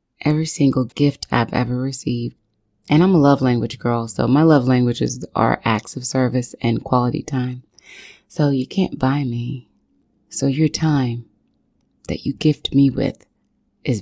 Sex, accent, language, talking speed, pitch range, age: female, American, English, 160 wpm, 125-150 Hz, 30-49